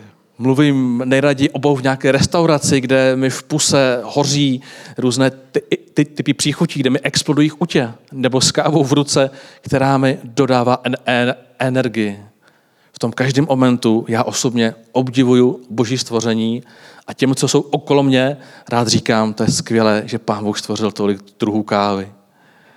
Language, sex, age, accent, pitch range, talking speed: Czech, male, 40-59, native, 115-145 Hz, 155 wpm